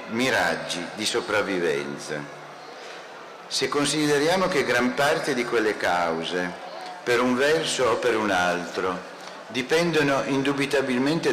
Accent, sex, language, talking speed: native, male, Italian, 105 wpm